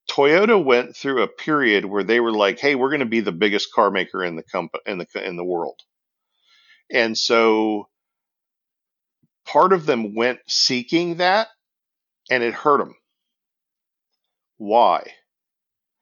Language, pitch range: English, 105-130 Hz